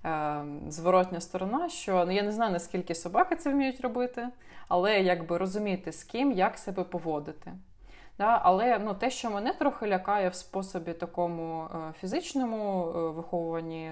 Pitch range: 165-200 Hz